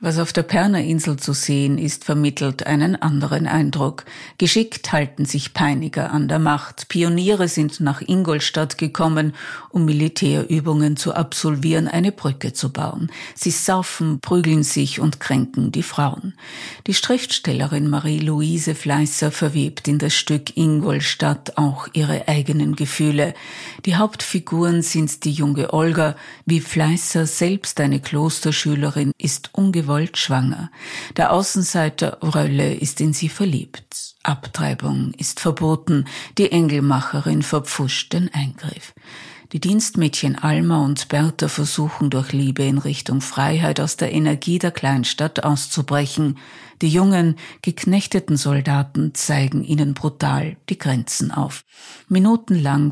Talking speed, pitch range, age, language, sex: 125 wpm, 145-165 Hz, 50-69, German, female